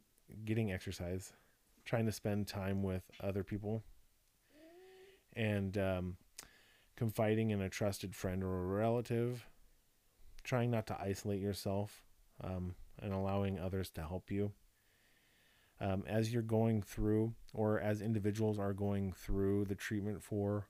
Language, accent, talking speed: English, American, 130 wpm